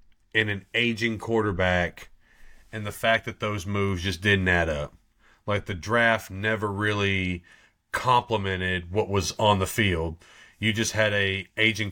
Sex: male